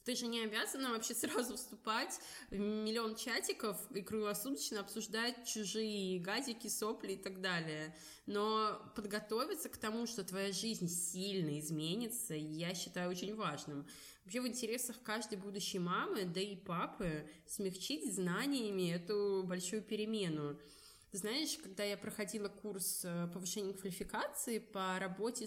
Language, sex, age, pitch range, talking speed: Russian, female, 20-39, 185-220 Hz, 130 wpm